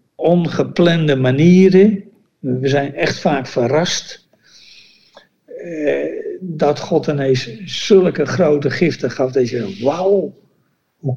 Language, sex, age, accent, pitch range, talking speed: Dutch, male, 60-79, Dutch, 130-175 Hz, 100 wpm